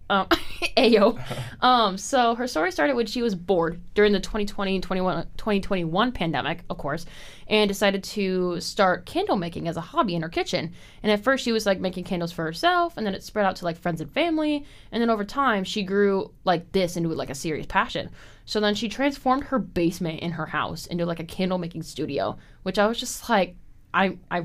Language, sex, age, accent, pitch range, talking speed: English, female, 20-39, American, 170-220 Hz, 205 wpm